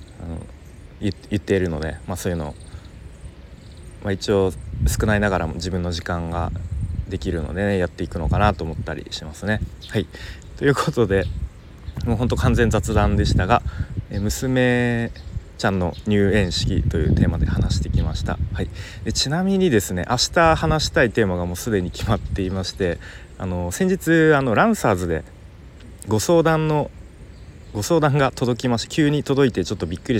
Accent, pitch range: native, 85-110 Hz